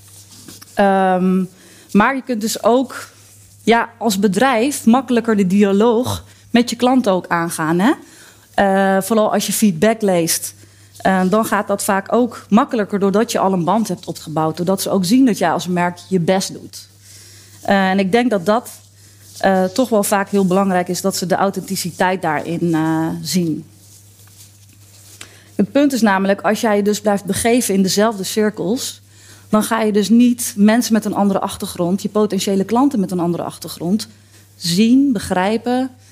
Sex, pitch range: female, 165-225 Hz